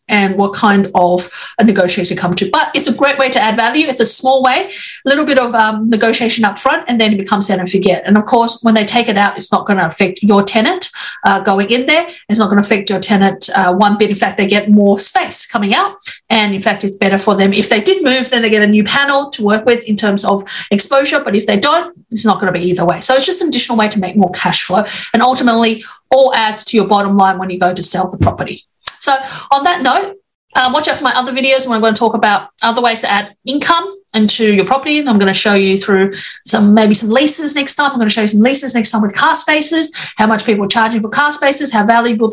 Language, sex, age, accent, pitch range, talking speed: English, female, 30-49, Australian, 205-265 Hz, 275 wpm